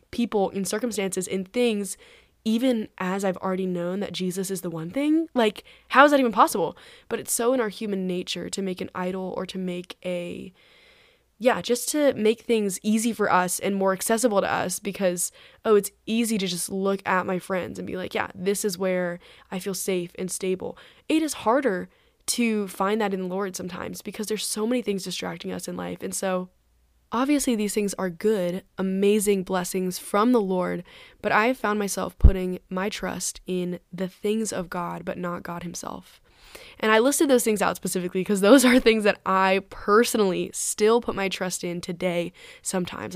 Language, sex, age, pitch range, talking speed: English, female, 10-29, 185-220 Hz, 195 wpm